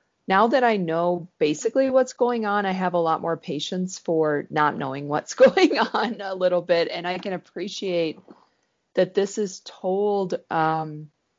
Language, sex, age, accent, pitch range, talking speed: English, female, 30-49, American, 160-195 Hz, 170 wpm